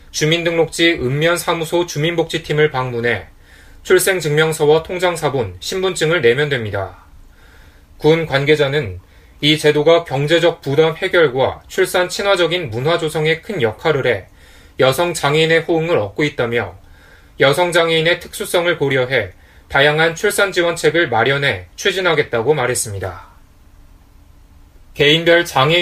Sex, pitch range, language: male, 110-165 Hz, Korean